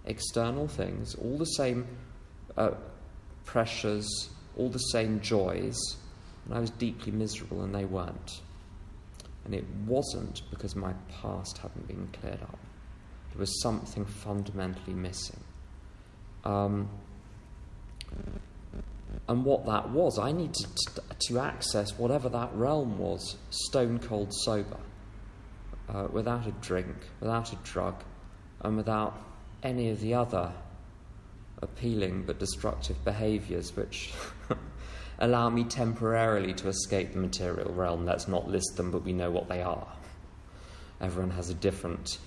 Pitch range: 90-110 Hz